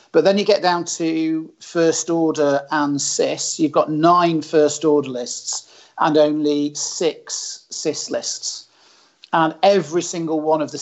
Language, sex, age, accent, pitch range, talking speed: English, male, 40-59, British, 145-160 Hz, 150 wpm